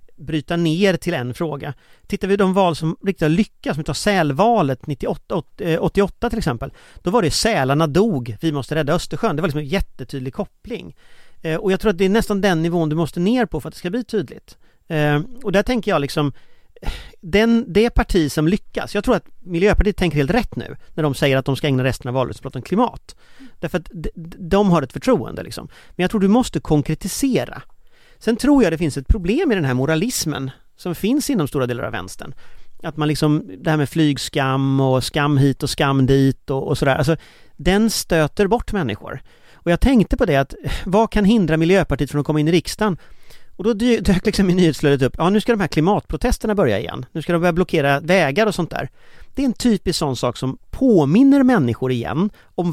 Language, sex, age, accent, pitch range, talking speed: Swedish, male, 40-59, native, 145-205 Hz, 210 wpm